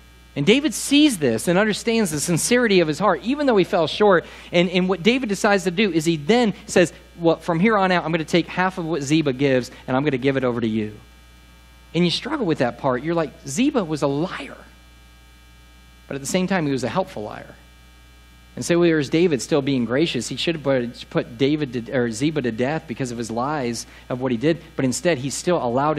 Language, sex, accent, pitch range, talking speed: English, male, American, 115-175 Hz, 235 wpm